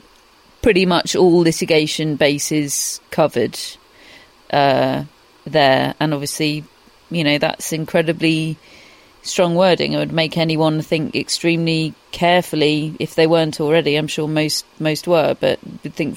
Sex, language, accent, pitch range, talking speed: female, English, British, 150-170 Hz, 130 wpm